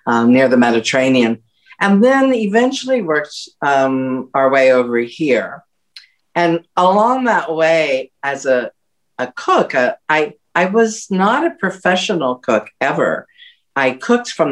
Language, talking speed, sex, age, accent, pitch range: English, 135 wpm, female, 50-69, American, 125-180 Hz